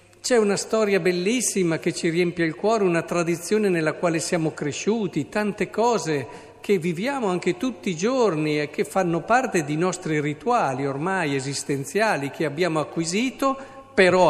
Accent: native